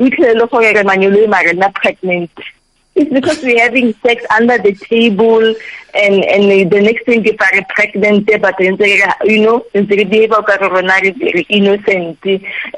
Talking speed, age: 115 wpm, 30-49